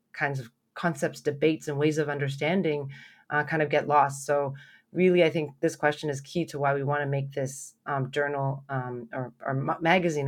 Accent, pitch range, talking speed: American, 140-170 Hz, 195 wpm